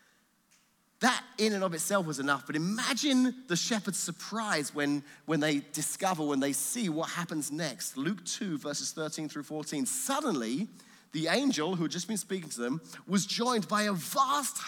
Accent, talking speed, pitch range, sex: British, 175 wpm, 160-245 Hz, male